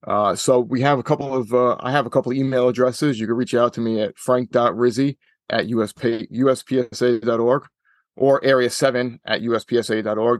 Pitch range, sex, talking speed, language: 115-125 Hz, male, 175 wpm, English